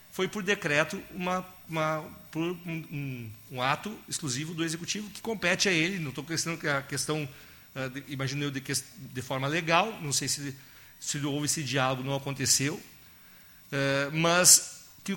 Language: Portuguese